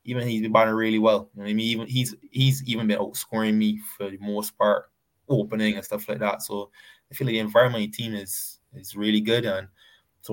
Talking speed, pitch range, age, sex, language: 240 wpm, 105-115 Hz, 20-39, male, English